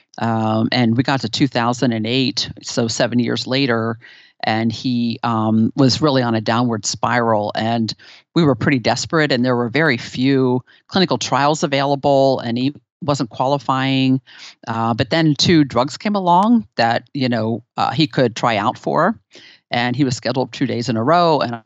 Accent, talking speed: American, 170 wpm